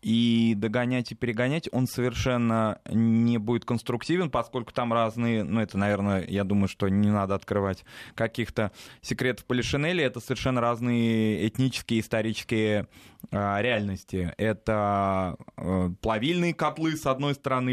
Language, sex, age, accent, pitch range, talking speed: Russian, male, 20-39, native, 110-125 Hz, 120 wpm